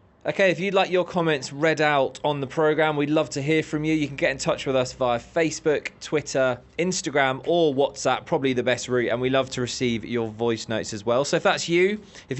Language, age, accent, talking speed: English, 20-39, British, 235 wpm